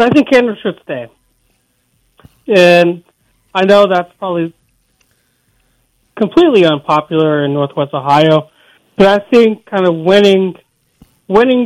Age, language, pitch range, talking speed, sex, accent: 30-49, English, 145-185 Hz, 115 wpm, male, American